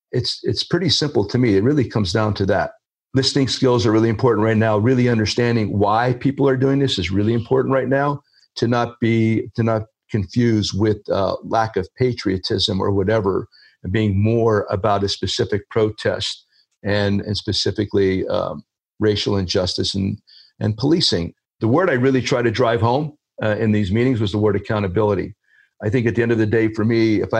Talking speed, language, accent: 190 wpm, English, American